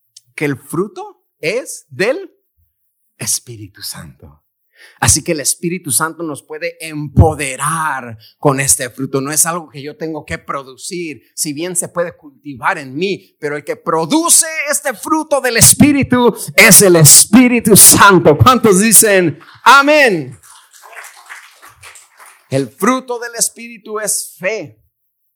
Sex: male